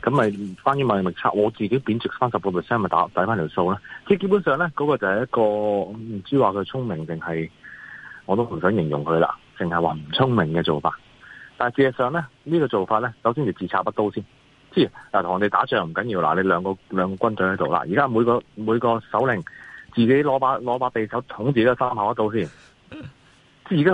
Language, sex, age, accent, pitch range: Chinese, male, 30-49, native, 100-140 Hz